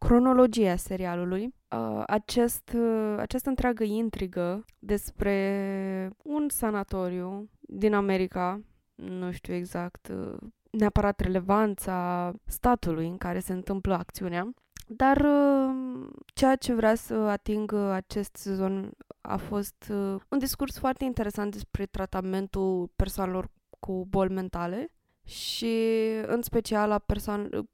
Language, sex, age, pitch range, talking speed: Romanian, female, 20-39, 190-220 Hz, 100 wpm